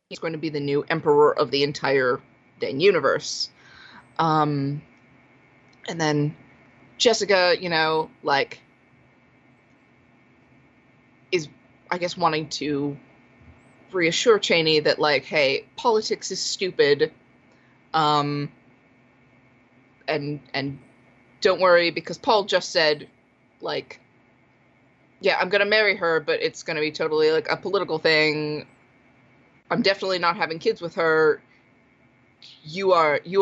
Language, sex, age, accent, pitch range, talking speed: English, female, 20-39, American, 140-190 Hz, 115 wpm